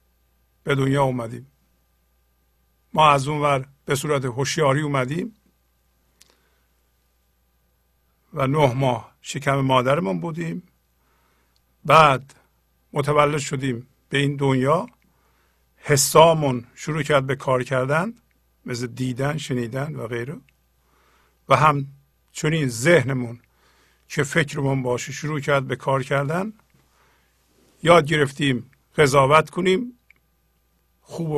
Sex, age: male, 50-69